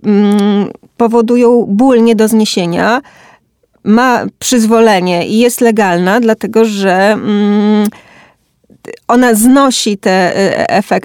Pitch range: 200-235 Hz